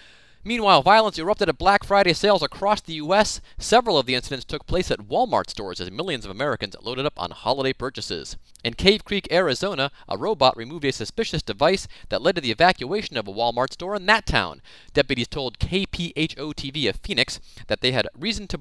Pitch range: 115-165 Hz